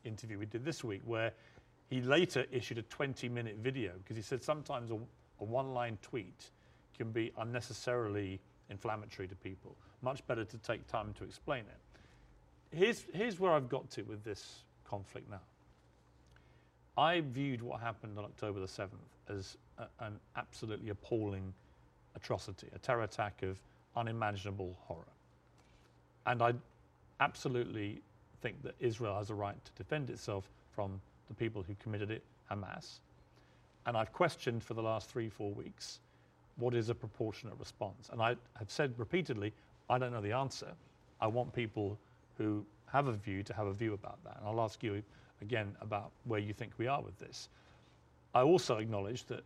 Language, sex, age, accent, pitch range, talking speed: English, male, 40-59, British, 100-125 Hz, 170 wpm